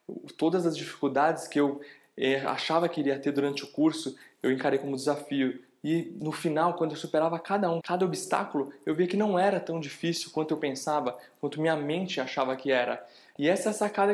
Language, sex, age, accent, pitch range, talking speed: Portuguese, male, 20-39, Brazilian, 135-165 Hz, 200 wpm